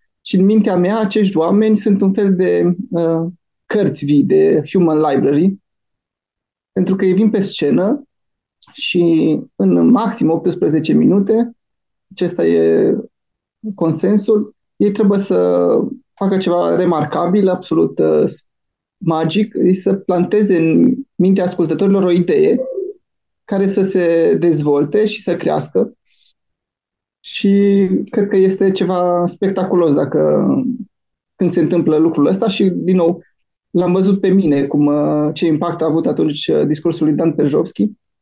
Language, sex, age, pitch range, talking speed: Romanian, male, 20-39, 160-200 Hz, 125 wpm